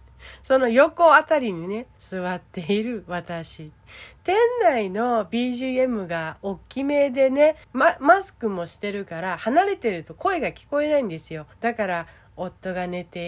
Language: Japanese